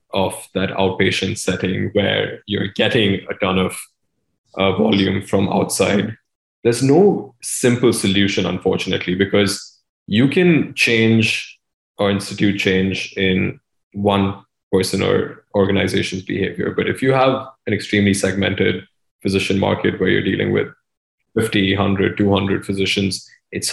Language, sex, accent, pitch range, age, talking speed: English, male, Indian, 95-105 Hz, 20-39, 125 wpm